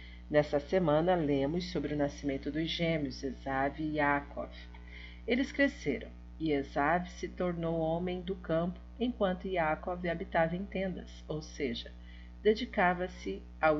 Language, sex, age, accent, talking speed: Portuguese, female, 50-69, Brazilian, 125 wpm